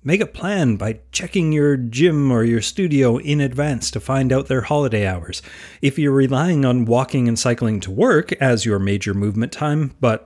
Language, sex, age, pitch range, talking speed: English, male, 30-49, 105-145 Hz, 195 wpm